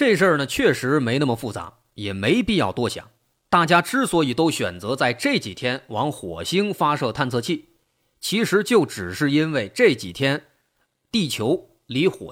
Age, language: 30-49, Chinese